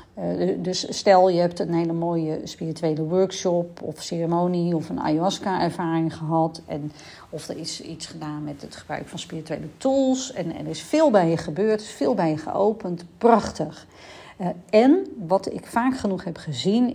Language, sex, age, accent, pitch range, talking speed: Dutch, female, 40-59, Dutch, 170-210 Hz, 175 wpm